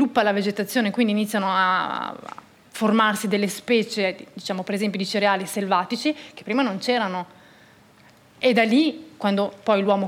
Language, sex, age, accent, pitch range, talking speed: Italian, female, 20-39, native, 195-225 Hz, 145 wpm